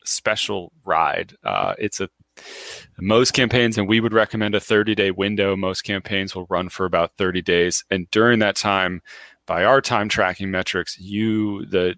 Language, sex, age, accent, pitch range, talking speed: English, male, 30-49, American, 90-105 Hz, 165 wpm